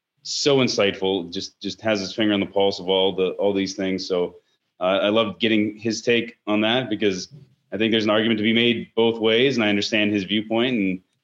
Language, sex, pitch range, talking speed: English, male, 100-120 Hz, 225 wpm